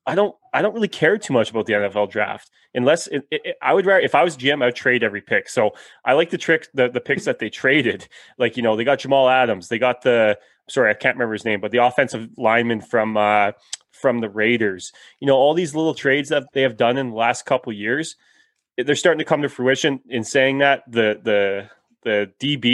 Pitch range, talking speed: 110-140 Hz, 235 wpm